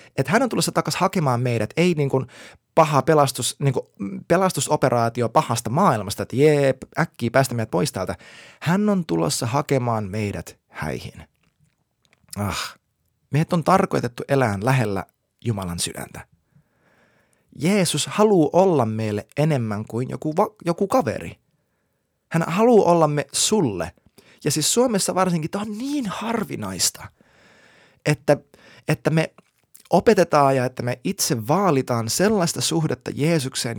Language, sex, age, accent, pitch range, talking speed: Finnish, male, 30-49, native, 115-165 Hz, 125 wpm